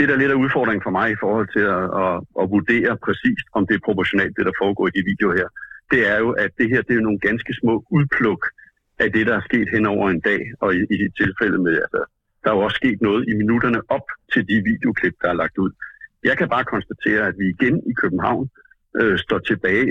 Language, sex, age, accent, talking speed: Danish, male, 60-79, native, 245 wpm